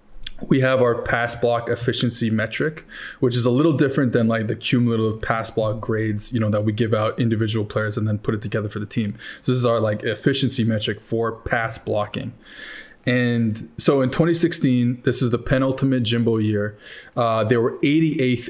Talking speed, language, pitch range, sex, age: 190 wpm, English, 110-130 Hz, male, 20-39